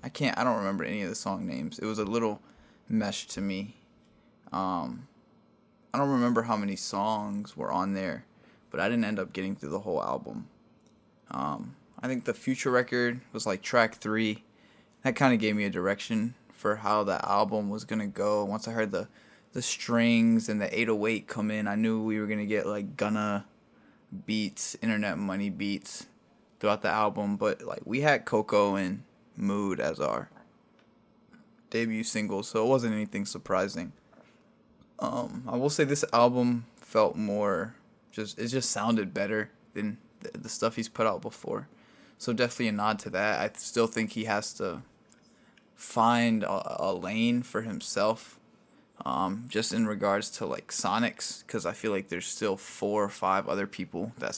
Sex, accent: male, American